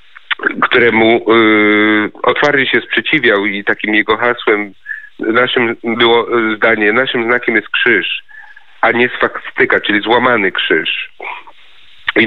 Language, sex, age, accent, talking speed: Polish, male, 40-59, native, 110 wpm